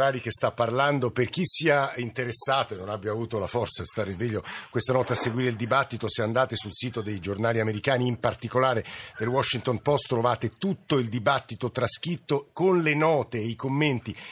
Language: Italian